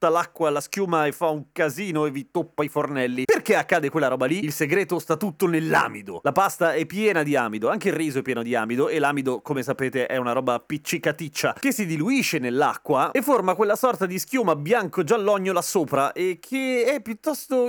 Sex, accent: male, native